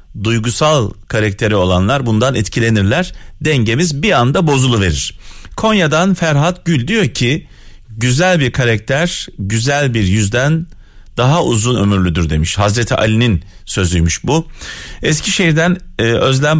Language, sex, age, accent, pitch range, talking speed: Turkish, male, 40-59, native, 95-140 Hz, 115 wpm